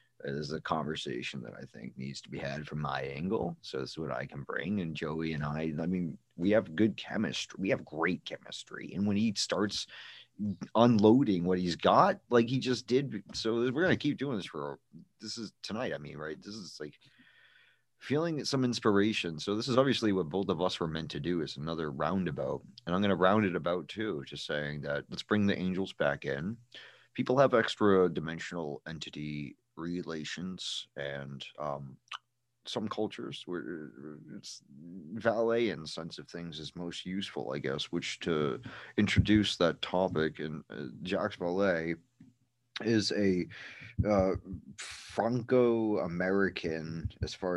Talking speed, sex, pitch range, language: 170 wpm, male, 80-110 Hz, English